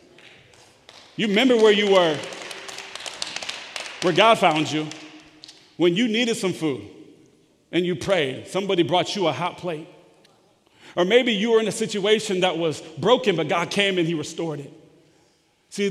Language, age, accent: English, 40-59, American